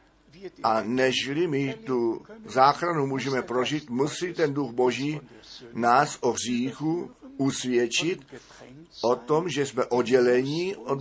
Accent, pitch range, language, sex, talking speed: native, 125-155 Hz, Czech, male, 115 wpm